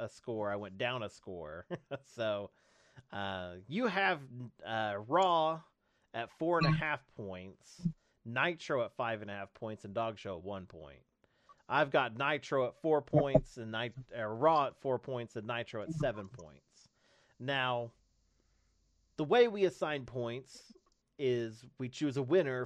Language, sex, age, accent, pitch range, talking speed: English, male, 30-49, American, 105-140 Hz, 160 wpm